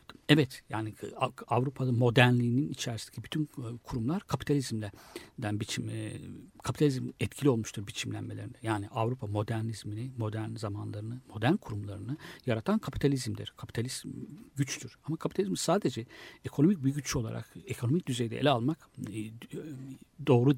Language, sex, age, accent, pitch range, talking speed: Turkish, male, 60-79, native, 115-140 Hz, 105 wpm